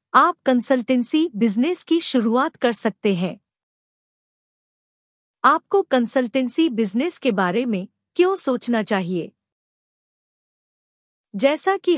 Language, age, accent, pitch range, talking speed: English, 50-69, Indian, 215-315 Hz, 95 wpm